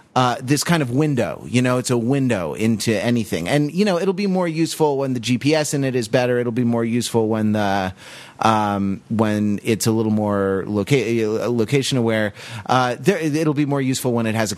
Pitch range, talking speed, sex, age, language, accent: 115-145 Hz, 210 wpm, male, 30-49, English, American